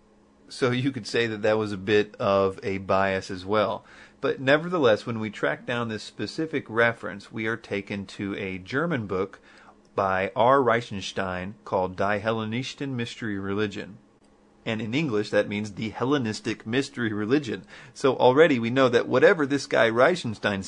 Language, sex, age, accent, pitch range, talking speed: English, male, 40-59, American, 100-125 Hz, 165 wpm